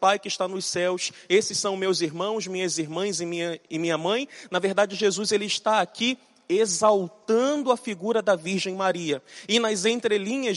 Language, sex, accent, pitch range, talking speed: Portuguese, male, Brazilian, 200-240 Hz, 170 wpm